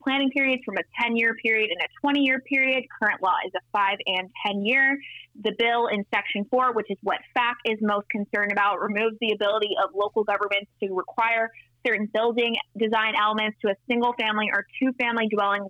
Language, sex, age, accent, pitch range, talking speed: English, female, 20-39, American, 200-240 Hz, 185 wpm